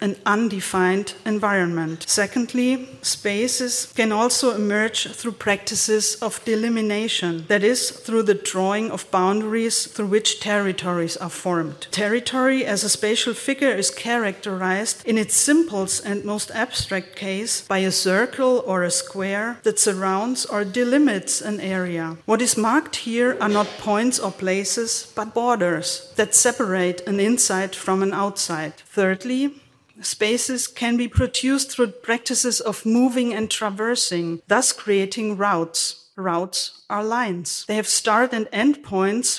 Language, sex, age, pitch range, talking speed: German, female, 50-69, 190-235 Hz, 140 wpm